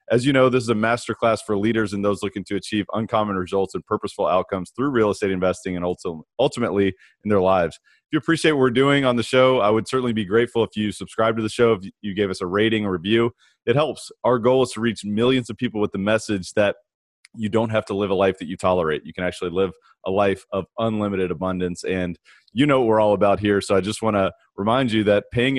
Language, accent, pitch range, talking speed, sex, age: English, American, 100-115 Hz, 245 wpm, male, 30-49